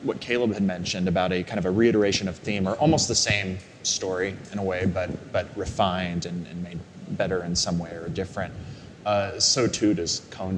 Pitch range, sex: 90-105 Hz, male